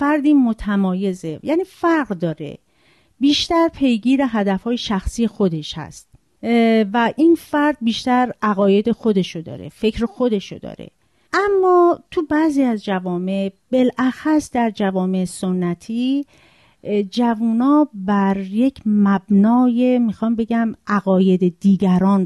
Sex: female